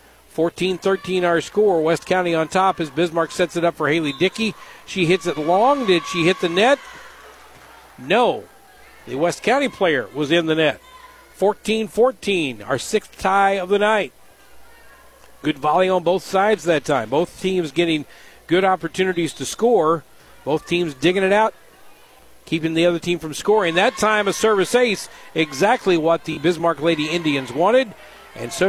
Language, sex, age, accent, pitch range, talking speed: English, male, 50-69, American, 165-210 Hz, 165 wpm